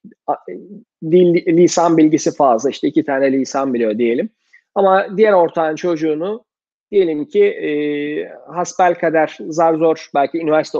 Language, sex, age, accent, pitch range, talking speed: Turkish, male, 40-59, native, 150-195 Hz, 130 wpm